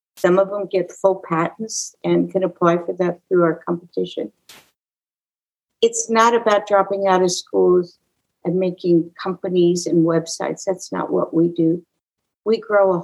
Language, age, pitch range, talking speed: English, 60-79, 170-210 Hz, 155 wpm